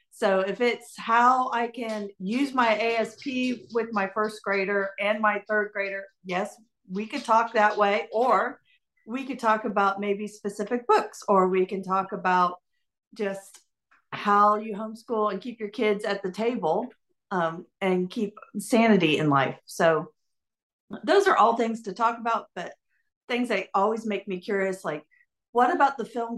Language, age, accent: English, 50-69, American